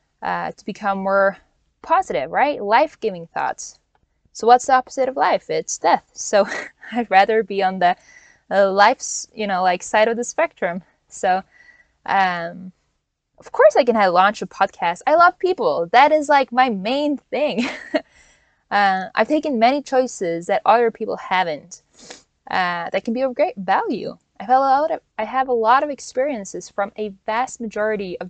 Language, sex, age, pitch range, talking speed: English, female, 10-29, 195-255 Hz, 175 wpm